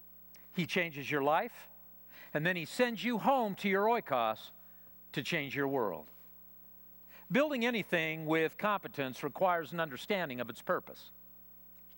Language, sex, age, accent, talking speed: English, male, 50-69, American, 140 wpm